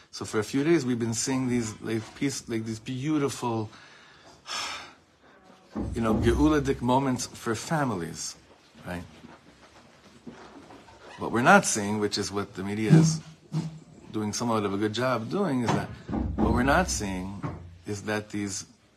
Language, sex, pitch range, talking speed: English, male, 105-130 Hz, 150 wpm